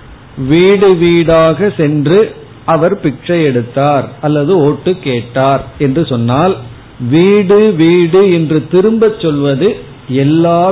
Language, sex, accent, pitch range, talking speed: Tamil, male, native, 130-175 Hz, 95 wpm